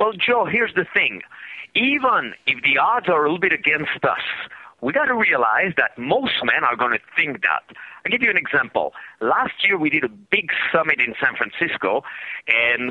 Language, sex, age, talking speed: English, male, 50-69, 190 wpm